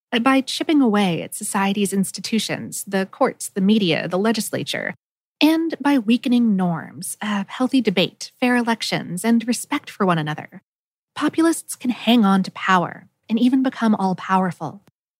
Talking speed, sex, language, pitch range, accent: 140 wpm, female, English, 185-260 Hz, American